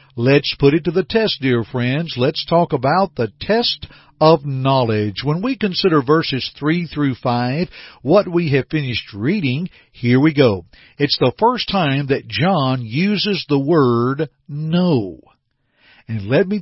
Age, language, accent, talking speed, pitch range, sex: 50-69, English, American, 155 wpm, 125-170 Hz, male